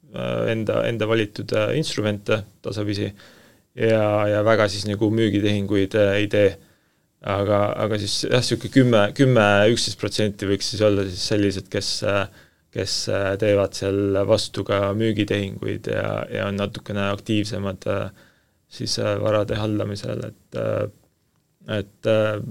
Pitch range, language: 100-115 Hz, English